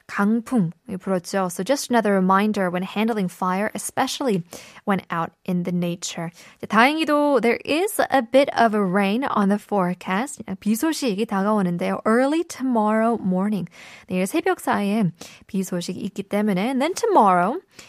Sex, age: female, 20-39